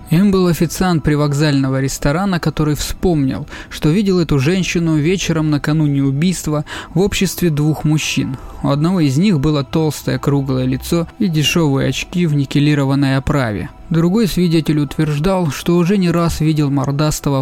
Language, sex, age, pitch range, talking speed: Russian, male, 20-39, 140-160 Hz, 140 wpm